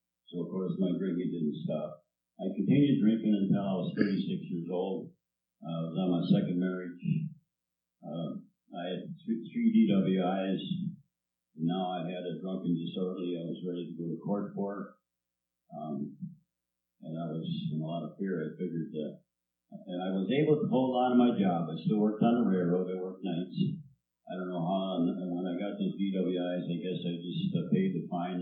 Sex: male